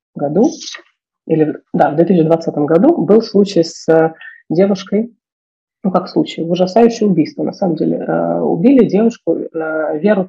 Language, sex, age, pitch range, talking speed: Russian, female, 30-49, 160-200 Hz, 120 wpm